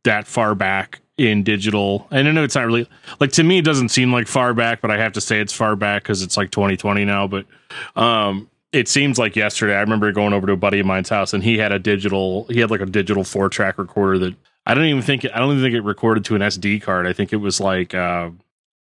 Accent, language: American, English